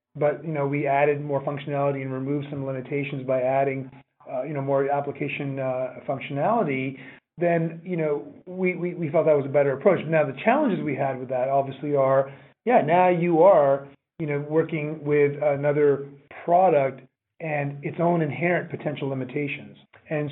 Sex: male